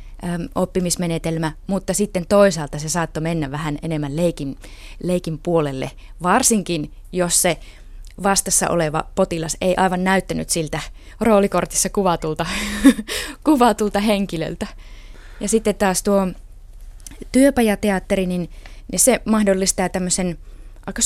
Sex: female